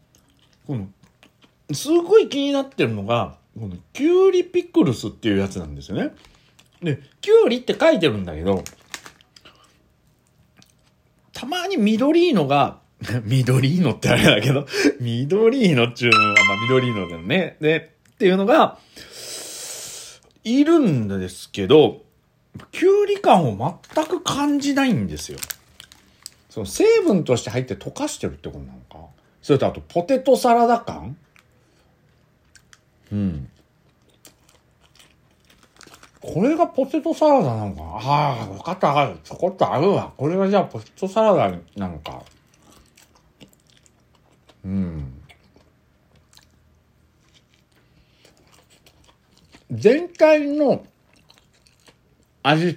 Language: Japanese